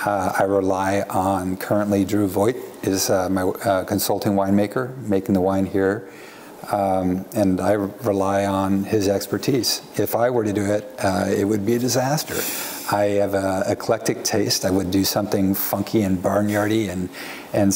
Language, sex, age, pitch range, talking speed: English, male, 50-69, 95-105 Hz, 170 wpm